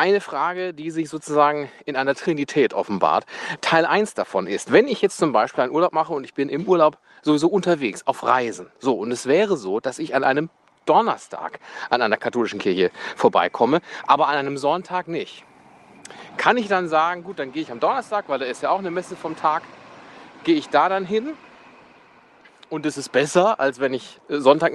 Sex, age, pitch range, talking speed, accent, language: male, 30-49, 140-190 Hz, 200 wpm, German, German